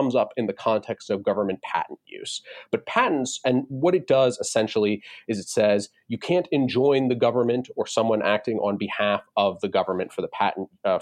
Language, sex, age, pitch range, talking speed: English, male, 30-49, 105-150 Hz, 195 wpm